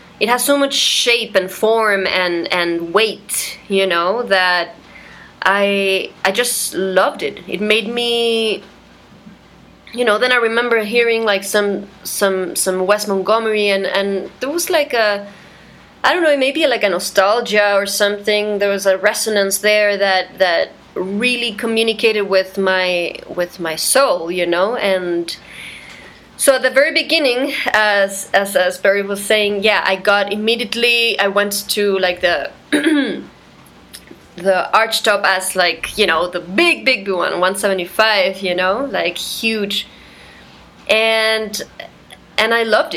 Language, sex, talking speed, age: English, female, 145 wpm, 20-39